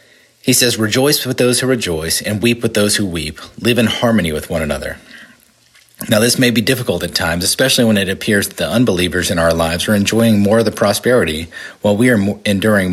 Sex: male